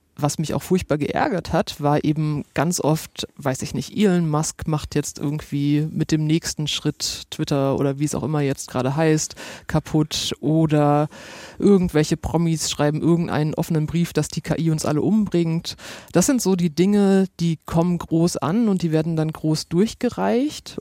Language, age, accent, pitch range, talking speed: German, 30-49, German, 150-175 Hz, 175 wpm